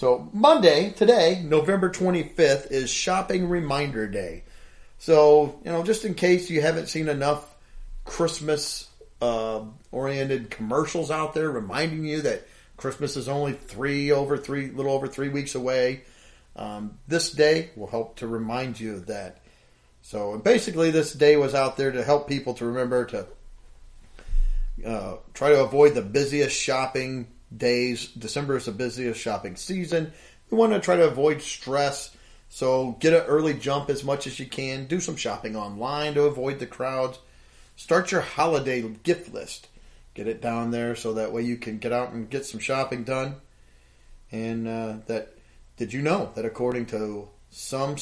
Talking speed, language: 165 wpm, English